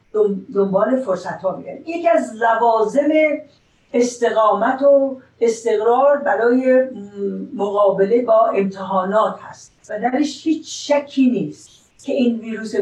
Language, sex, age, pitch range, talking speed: Persian, female, 50-69, 205-270 Hz, 105 wpm